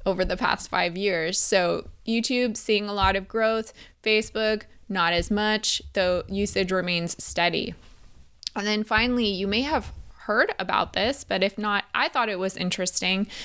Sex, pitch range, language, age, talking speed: female, 190-230 Hz, English, 20-39, 165 wpm